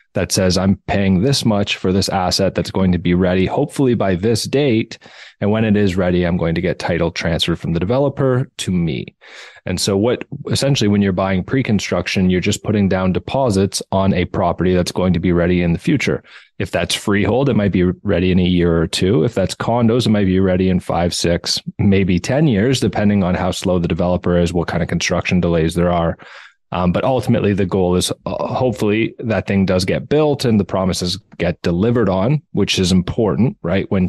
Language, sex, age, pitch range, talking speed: English, male, 30-49, 90-110 Hz, 215 wpm